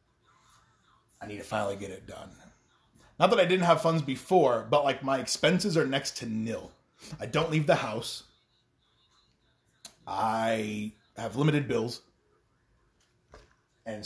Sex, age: male, 30-49